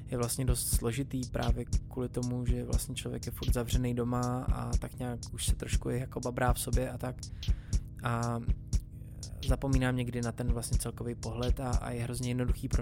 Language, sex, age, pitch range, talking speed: Czech, male, 20-39, 120-125 Hz, 190 wpm